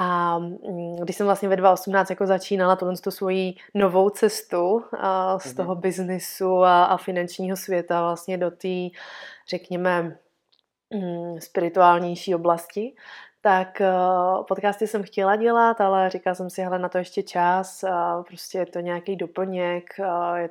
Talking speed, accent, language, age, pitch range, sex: 130 wpm, native, Czech, 20-39, 180-200 Hz, female